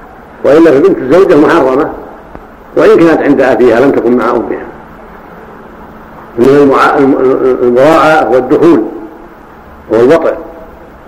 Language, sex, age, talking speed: Arabic, male, 60-79, 95 wpm